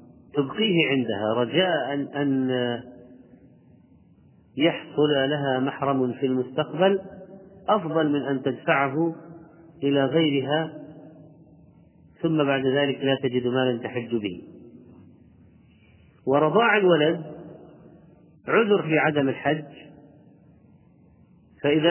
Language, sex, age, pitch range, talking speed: Arabic, male, 40-59, 125-155 Hz, 85 wpm